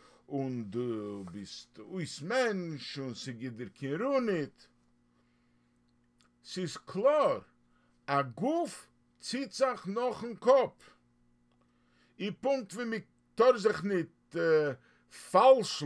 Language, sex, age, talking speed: English, male, 50-69, 115 wpm